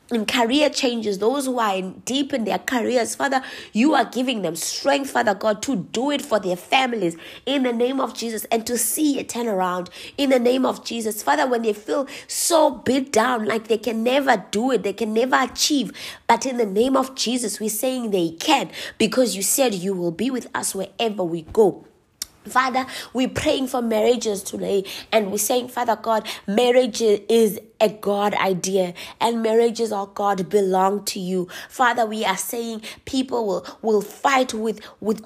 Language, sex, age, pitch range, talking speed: English, female, 20-39, 205-250 Hz, 190 wpm